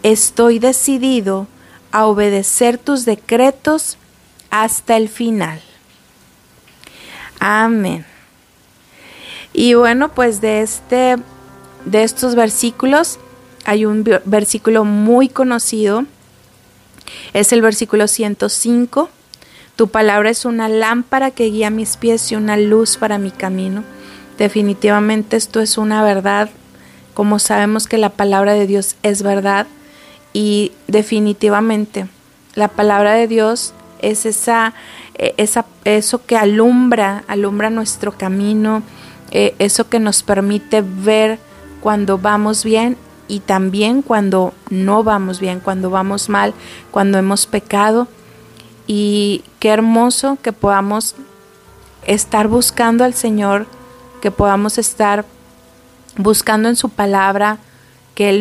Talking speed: 110 wpm